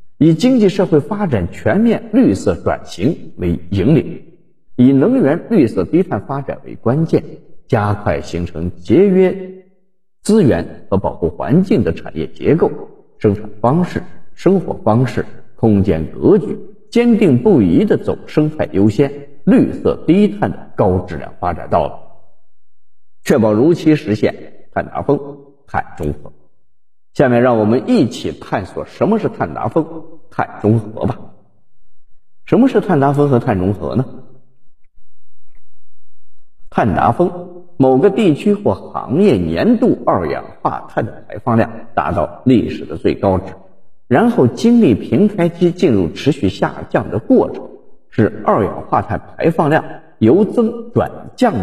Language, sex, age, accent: Chinese, male, 50-69, native